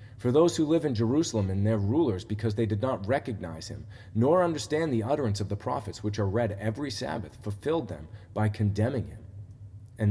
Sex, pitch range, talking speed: male, 105-120 Hz, 195 wpm